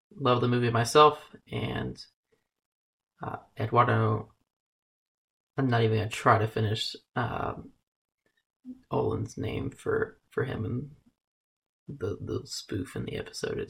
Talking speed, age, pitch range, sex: 125 wpm, 20-39, 115-140 Hz, male